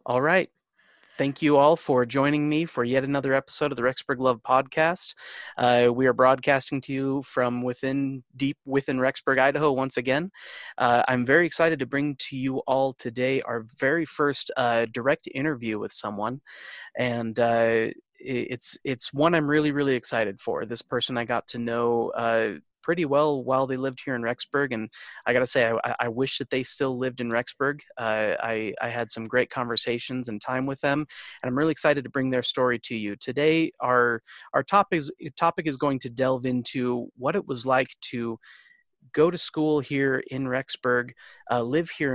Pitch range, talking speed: 120-140 Hz, 190 wpm